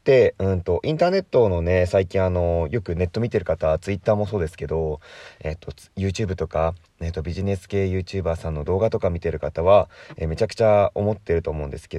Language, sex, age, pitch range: Japanese, male, 20-39, 80-100 Hz